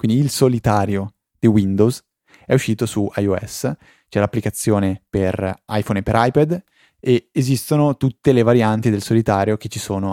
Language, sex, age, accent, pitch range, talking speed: Italian, male, 20-39, native, 100-120 Hz, 155 wpm